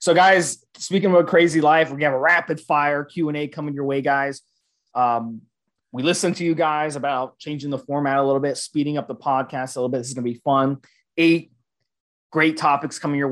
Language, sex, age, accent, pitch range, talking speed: English, male, 20-39, American, 135-175 Hz, 210 wpm